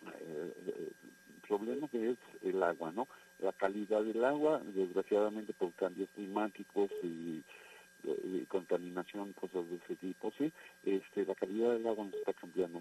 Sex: male